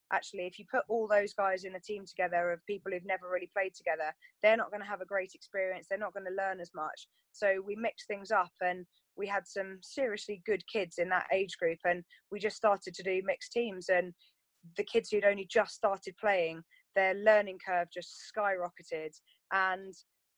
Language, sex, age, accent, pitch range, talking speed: English, female, 20-39, British, 185-210 Hz, 210 wpm